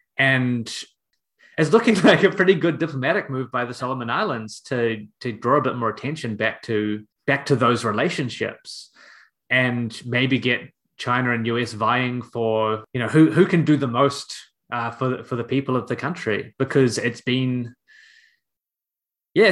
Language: English